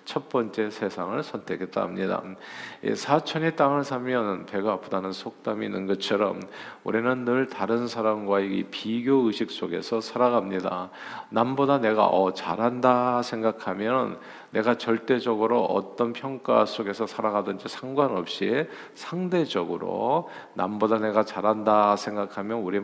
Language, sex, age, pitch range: Korean, male, 40-59, 100-135 Hz